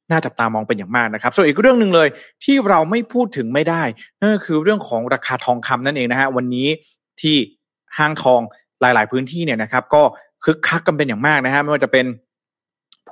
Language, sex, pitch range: Thai, male, 120-160 Hz